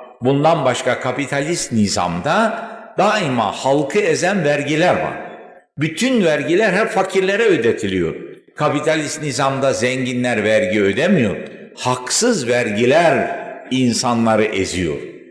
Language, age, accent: Turkish, 60-79, native